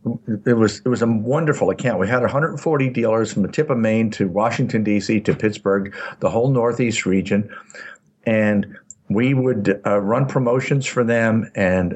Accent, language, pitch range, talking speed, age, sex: American, English, 110-140 Hz, 170 wpm, 60-79, male